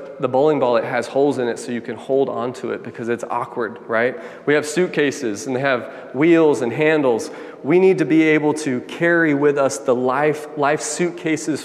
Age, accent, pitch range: 30-49, American, 135-155 Hz